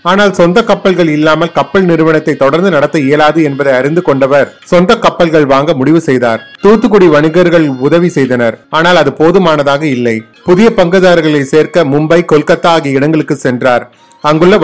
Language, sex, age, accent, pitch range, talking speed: Tamil, male, 30-49, native, 140-175 Hz, 125 wpm